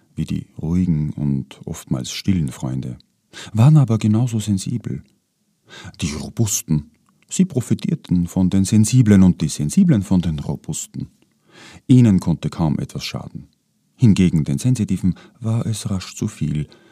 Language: German